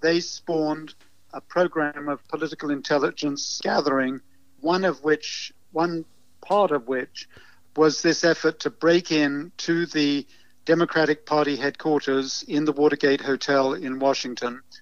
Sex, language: male, English